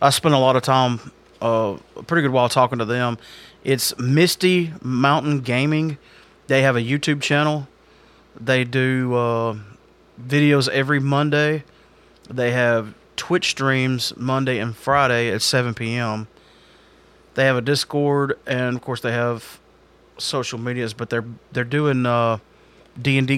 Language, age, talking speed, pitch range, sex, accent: English, 30-49, 145 wpm, 120-145 Hz, male, American